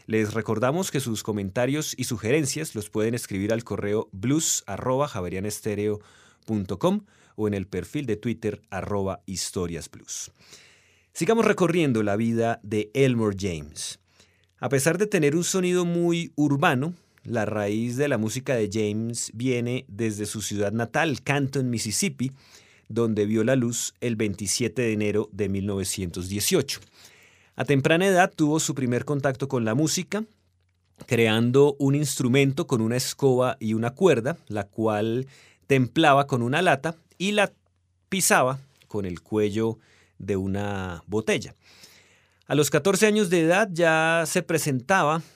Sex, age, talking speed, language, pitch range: male, 30-49, 135 wpm, Spanish, 105-145 Hz